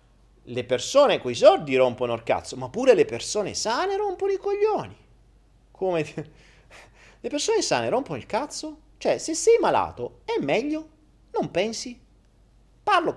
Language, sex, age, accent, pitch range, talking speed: Italian, male, 30-49, native, 125-195 Hz, 145 wpm